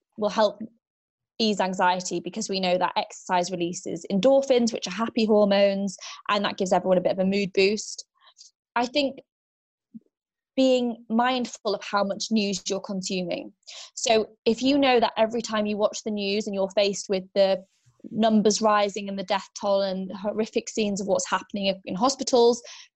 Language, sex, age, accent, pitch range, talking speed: English, female, 20-39, British, 195-240 Hz, 170 wpm